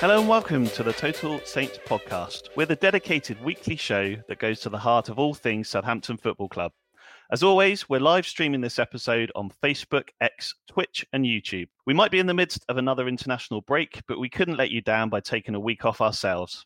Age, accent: 40-59, British